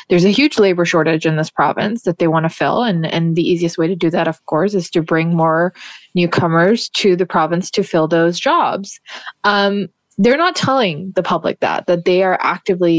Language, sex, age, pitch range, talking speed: English, female, 20-39, 165-205 Hz, 215 wpm